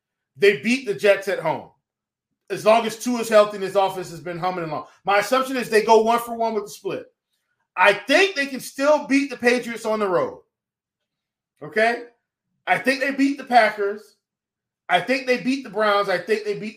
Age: 30-49